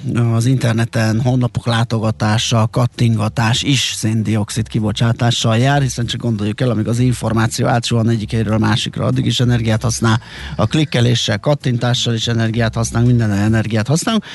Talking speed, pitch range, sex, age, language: 140 wpm, 115-130 Hz, male, 30-49, Hungarian